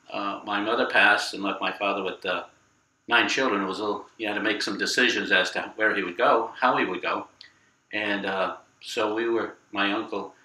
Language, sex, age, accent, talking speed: English, male, 50-69, American, 225 wpm